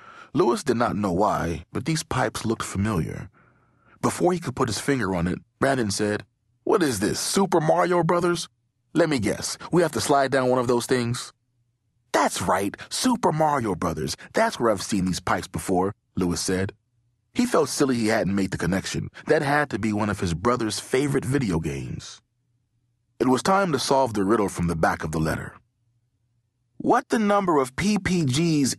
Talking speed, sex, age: 185 wpm, male, 30-49